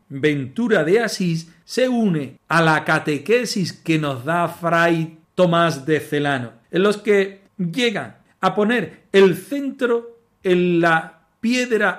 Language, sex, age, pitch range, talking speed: Spanish, male, 40-59, 150-195 Hz, 130 wpm